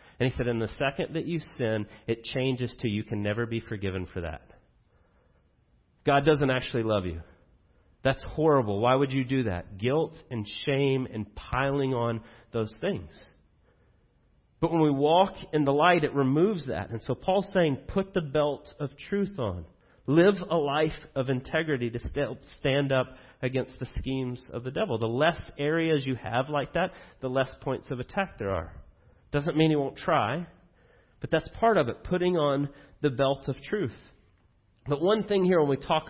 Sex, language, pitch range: male, English, 115-150 Hz